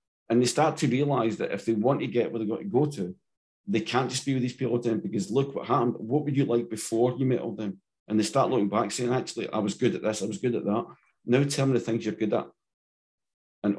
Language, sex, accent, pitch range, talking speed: English, male, British, 105-135 Hz, 280 wpm